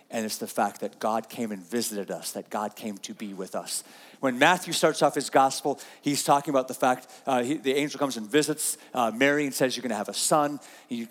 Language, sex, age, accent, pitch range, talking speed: English, male, 40-59, American, 145-230 Hz, 250 wpm